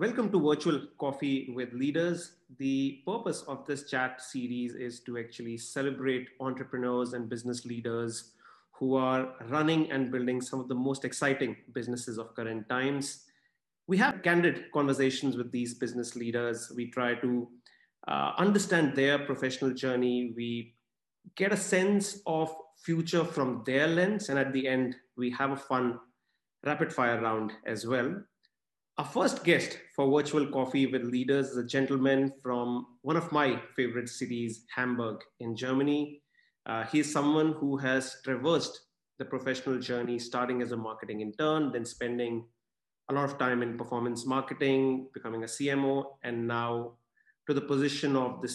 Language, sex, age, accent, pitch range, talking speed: English, male, 30-49, Indian, 120-140 Hz, 155 wpm